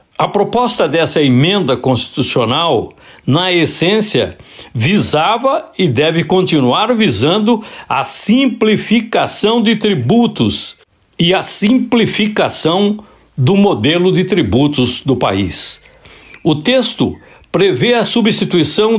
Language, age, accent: Portuguese, 60-79, Brazilian